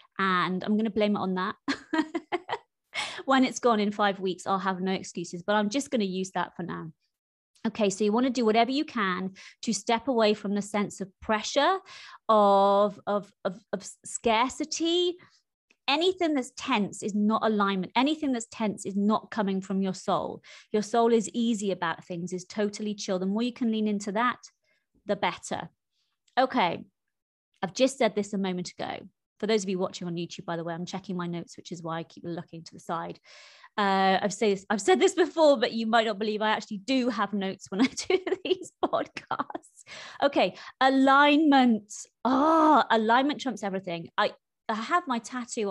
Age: 20-39